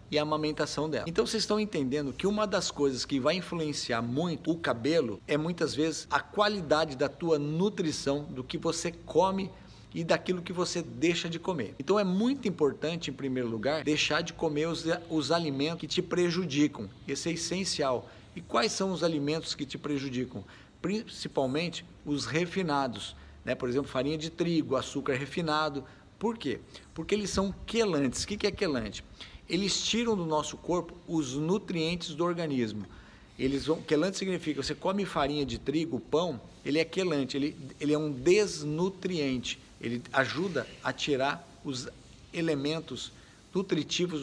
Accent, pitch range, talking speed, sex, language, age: Brazilian, 140-175 Hz, 160 wpm, male, Portuguese, 50-69